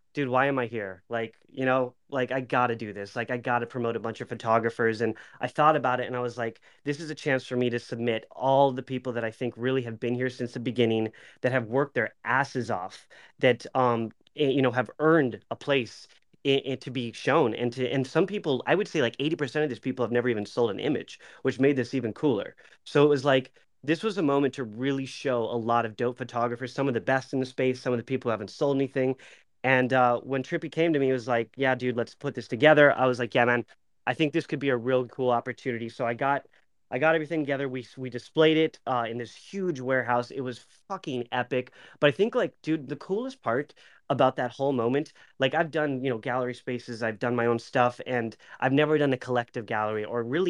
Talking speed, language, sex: 250 wpm, English, male